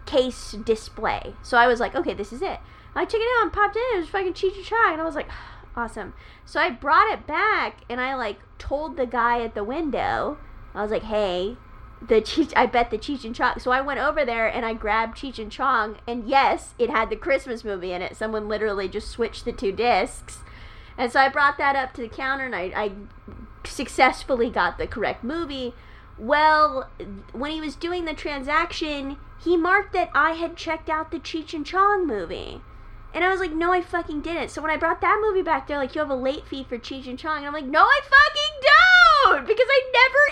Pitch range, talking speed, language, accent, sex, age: 245-365 Hz, 230 wpm, English, American, female, 30-49